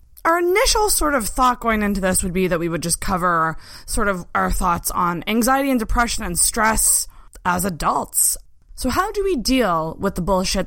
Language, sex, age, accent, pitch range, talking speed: English, female, 20-39, American, 185-280 Hz, 195 wpm